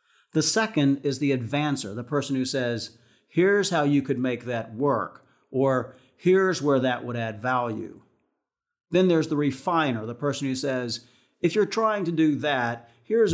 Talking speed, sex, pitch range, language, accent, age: 170 wpm, male, 120-155 Hz, English, American, 50-69